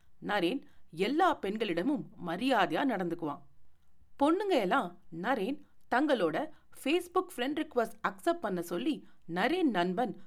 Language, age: Tamil, 40-59